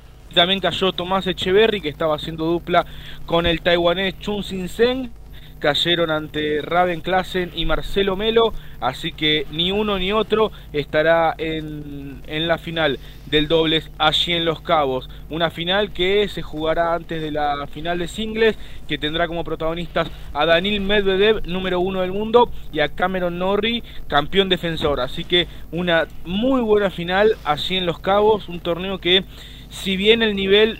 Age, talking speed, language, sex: 20-39, 160 wpm, Spanish, male